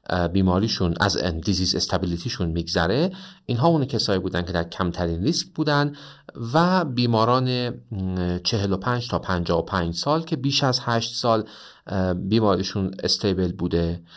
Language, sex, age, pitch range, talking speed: Persian, male, 40-59, 90-125 Hz, 120 wpm